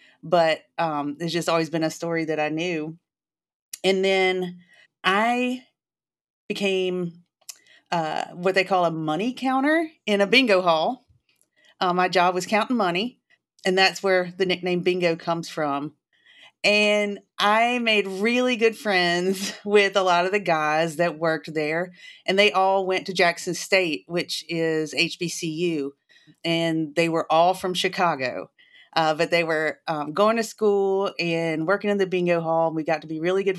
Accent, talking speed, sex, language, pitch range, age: American, 165 wpm, female, English, 165-195 Hz, 40-59